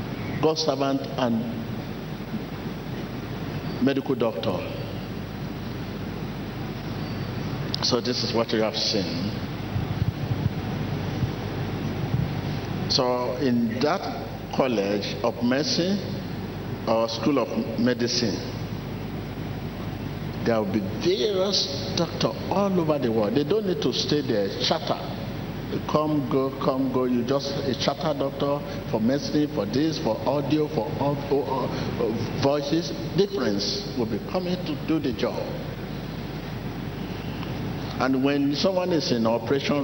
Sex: male